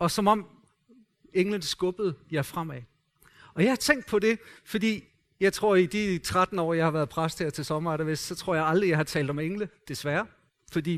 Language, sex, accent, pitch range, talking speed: Danish, male, native, 175-235 Hz, 215 wpm